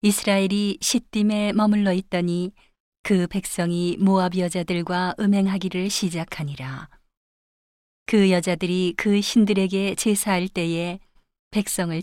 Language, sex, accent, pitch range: Korean, female, native, 180-205 Hz